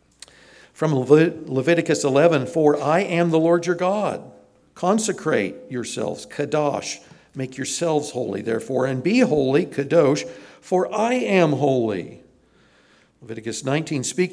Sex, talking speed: male, 115 wpm